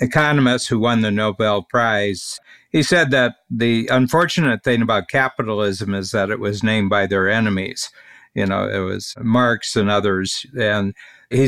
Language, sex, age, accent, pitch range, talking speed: English, male, 60-79, American, 105-130 Hz, 160 wpm